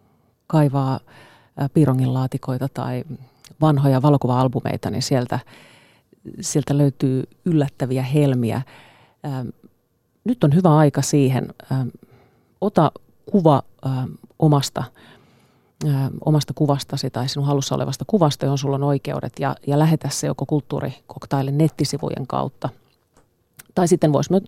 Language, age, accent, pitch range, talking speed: Finnish, 30-49, native, 130-155 Hz, 100 wpm